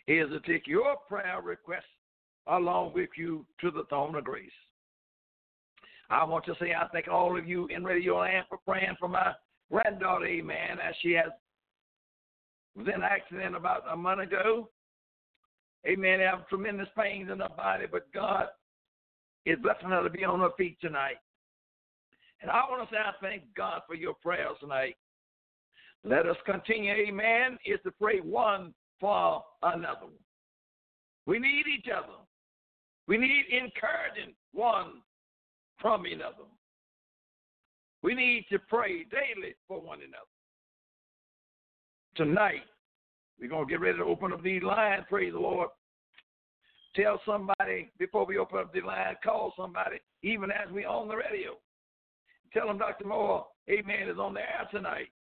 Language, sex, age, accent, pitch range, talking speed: English, male, 60-79, American, 180-235 Hz, 155 wpm